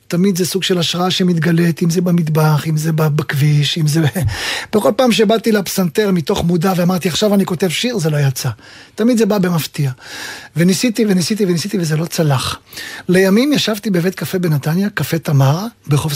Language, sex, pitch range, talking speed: Hebrew, male, 160-220 Hz, 170 wpm